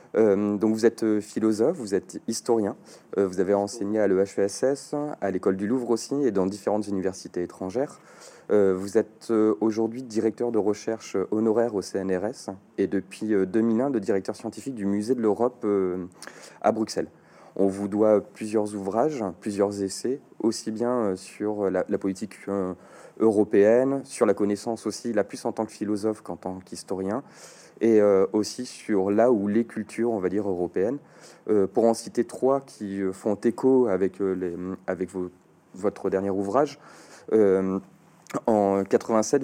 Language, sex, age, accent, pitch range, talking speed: French, male, 30-49, French, 95-115 Hz, 150 wpm